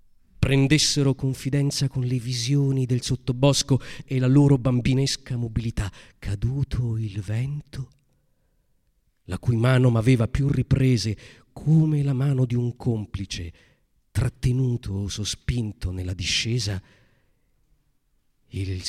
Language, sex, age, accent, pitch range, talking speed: Italian, male, 40-59, native, 105-140 Hz, 105 wpm